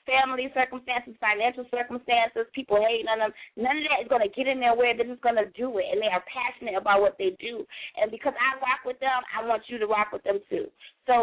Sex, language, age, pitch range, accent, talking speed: female, English, 20-39, 235-290 Hz, American, 250 wpm